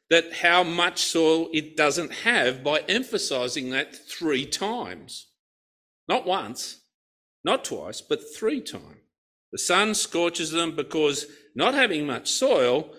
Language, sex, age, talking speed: English, male, 50-69, 130 wpm